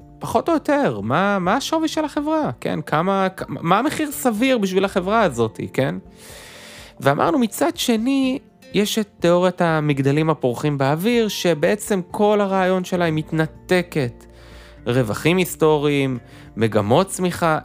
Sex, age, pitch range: male, 20-39, 125-180 Hz